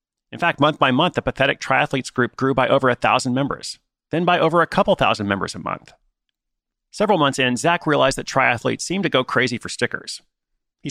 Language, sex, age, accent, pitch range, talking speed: English, male, 30-49, American, 115-150 Hz, 205 wpm